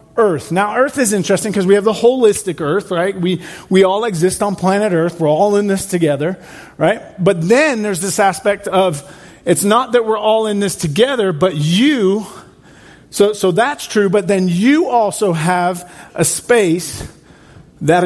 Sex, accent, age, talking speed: male, American, 40-59, 175 wpm